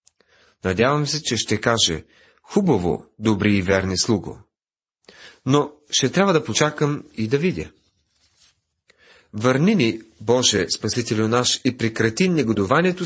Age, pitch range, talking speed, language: 30-49, 105-150 Hz, 120 wpm, Bulgarian